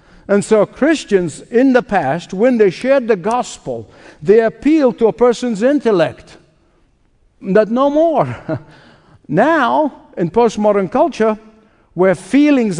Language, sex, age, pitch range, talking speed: English, male, 60-79, 165-225 Hz, 120 wpm